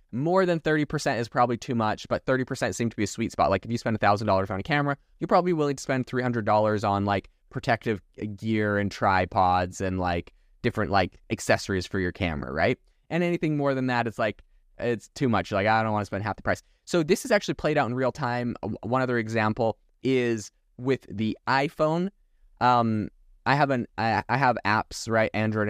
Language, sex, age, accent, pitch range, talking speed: English, male, 20-39, American, 105-135 Hz, 210 wpm